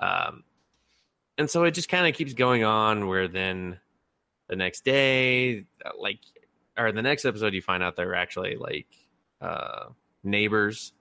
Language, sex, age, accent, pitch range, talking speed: English, male, 20-39, American, 95-120 Hz, 160 wpm